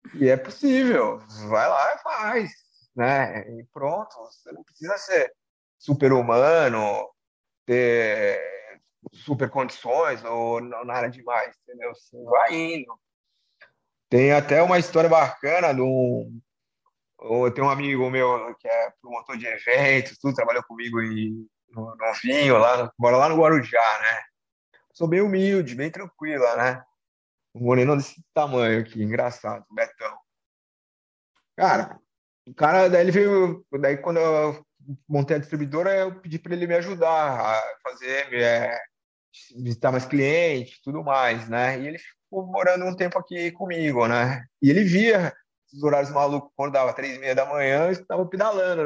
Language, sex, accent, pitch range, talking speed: Portuguese, male, Brazilian, 125-170 Hz, 145 wpm